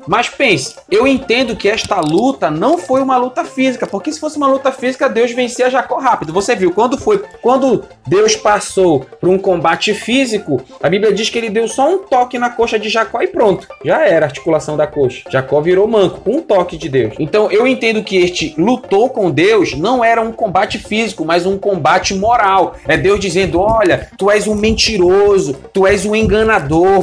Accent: Brazilian